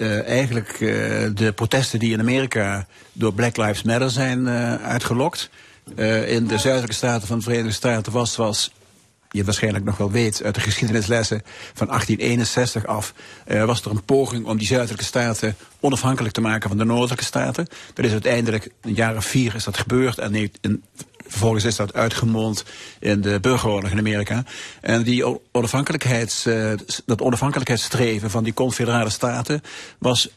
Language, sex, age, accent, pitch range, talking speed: Dutch, male, 50-69, Dutch, 110-125 Hz, 170 wpm